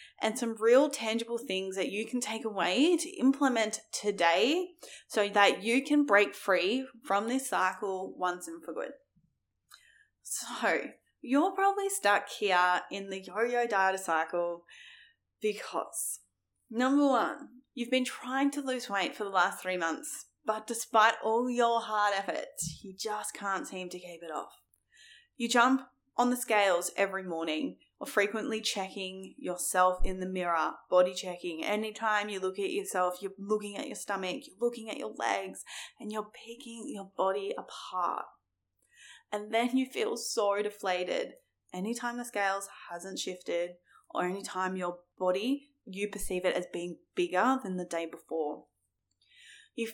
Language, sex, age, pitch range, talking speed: English, female, 10-29, 185-245 Hz, 155 wpm